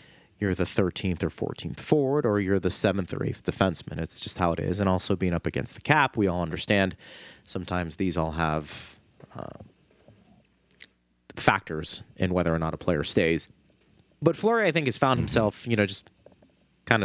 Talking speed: 185 wpm